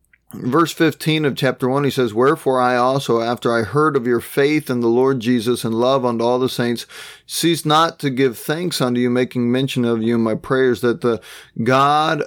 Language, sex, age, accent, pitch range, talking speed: English, male, 30-49, American, 120-140 Hz, 210 wpm